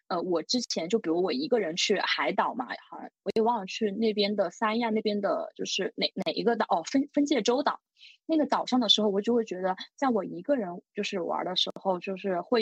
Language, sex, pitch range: Chinese, female, 195-245 Hz